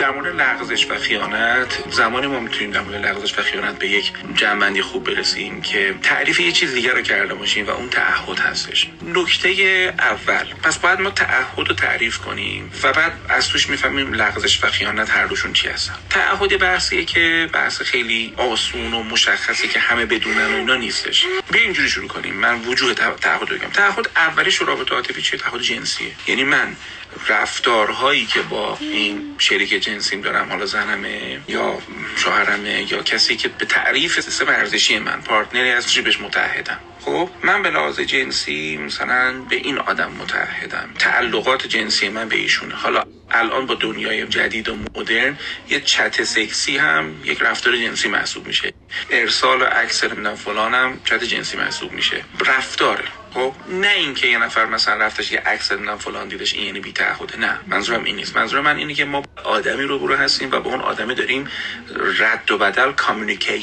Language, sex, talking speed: Persian, male, 170 wpm